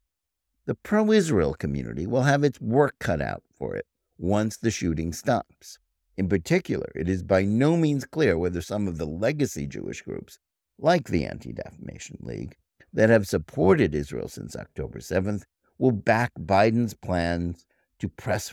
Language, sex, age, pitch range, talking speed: English, male, 60-79, 80-125 Hz, 150 wpm